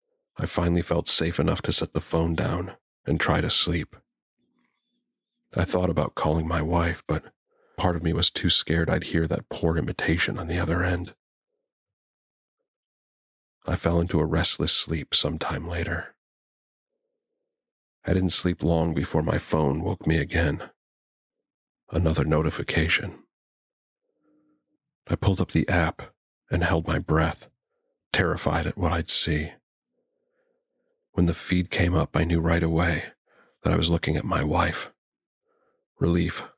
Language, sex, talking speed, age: English, male, 145 wpm, 40-59